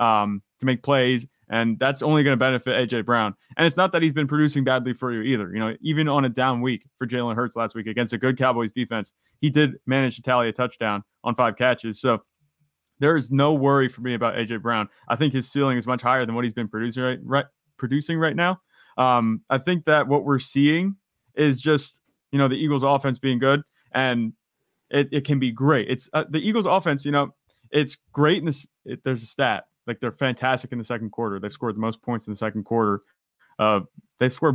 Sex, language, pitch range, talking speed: male, English, 120-145 Hz, 220 wpm